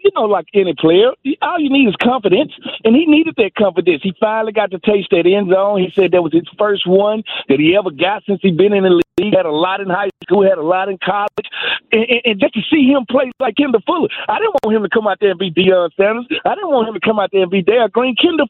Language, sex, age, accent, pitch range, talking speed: English, male, 50-69, American, 195-255 Hz, 285 wpm